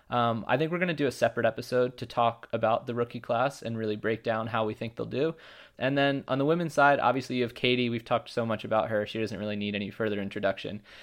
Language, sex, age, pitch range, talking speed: English, male, 20-39, 110-125 Hz, 260 wpm